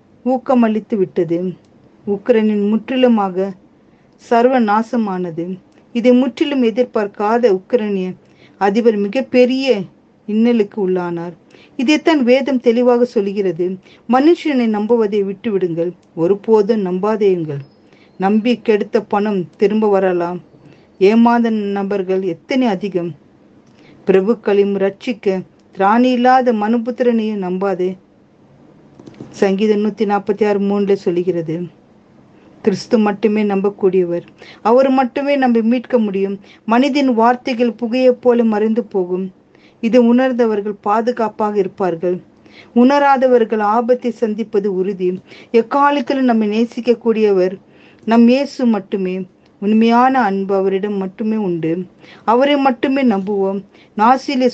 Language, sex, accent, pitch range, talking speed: Tamil, female, native, 190-240 Hz, 90 wpm